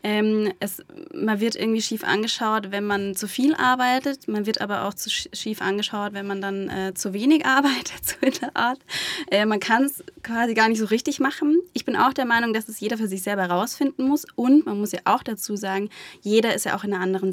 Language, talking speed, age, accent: German, 230 wpm, 20-39, German